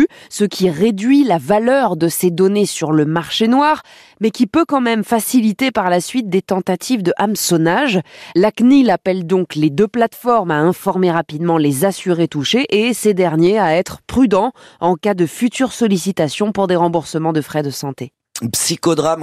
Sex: female